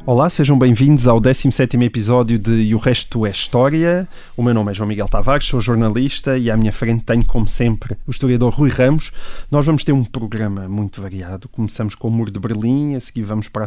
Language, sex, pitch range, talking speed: Portuguese, male, 110-135 Hz, 220 wpm